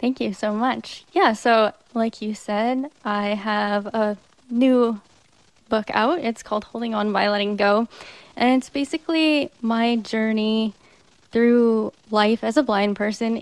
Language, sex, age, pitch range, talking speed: English, female, 10-29, 200-220 Hz, 150 wpm